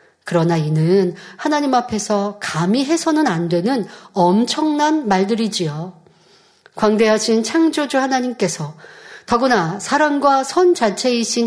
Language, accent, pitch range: Korean, native, 180-250 Hz